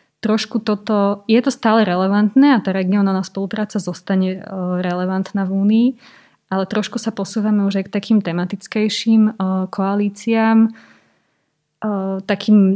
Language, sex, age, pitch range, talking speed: Slovak, female, 20-39, 180-200 Hz, 120 wpm